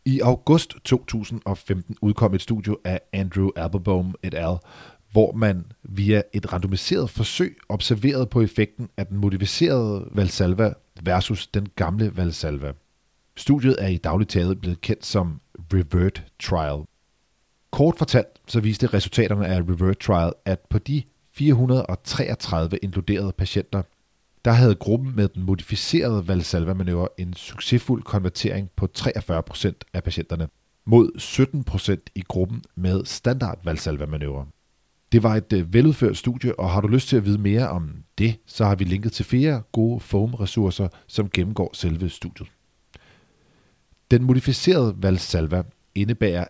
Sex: male